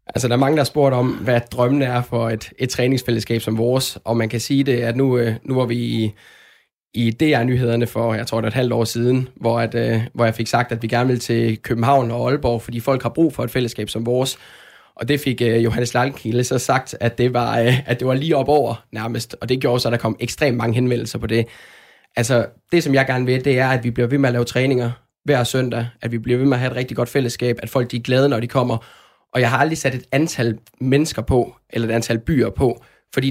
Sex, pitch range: male, 115-135 Hz